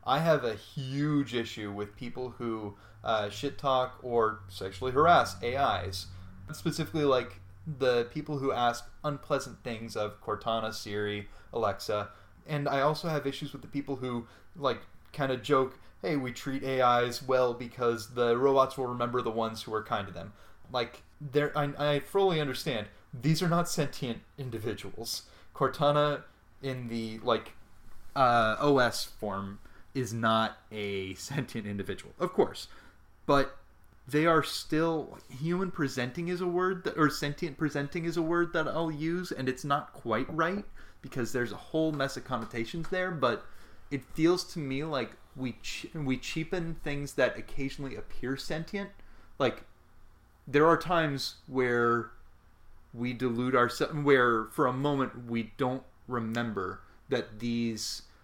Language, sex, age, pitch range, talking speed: English, male, 30-49, 110-145 Hz, 150 wpm